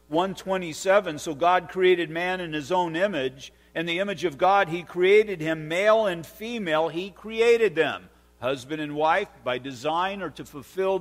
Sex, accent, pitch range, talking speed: male, American, 145-190 Hz, 170 wpm